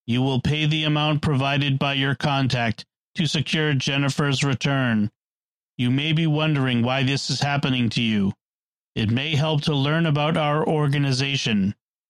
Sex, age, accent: male, 40-59, American